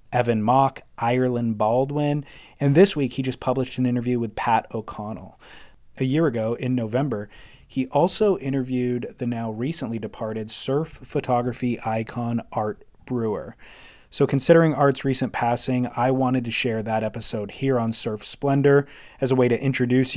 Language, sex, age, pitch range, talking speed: English, male, 30-49, 115-140 Hz, 155 wpm